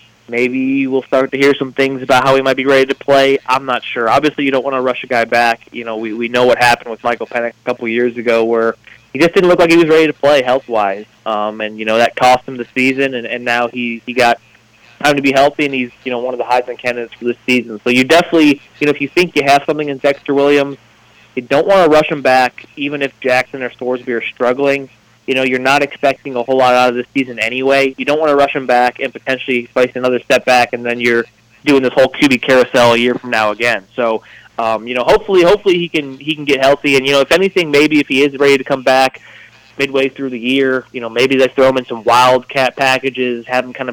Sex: male